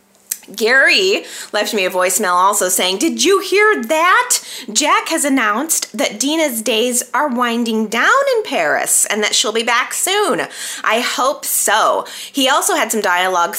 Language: English